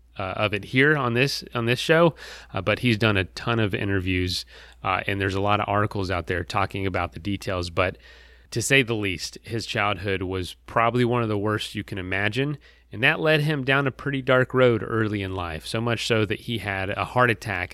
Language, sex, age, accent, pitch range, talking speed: English, male, 30-49, American, 95-125 Hz, 225 wpm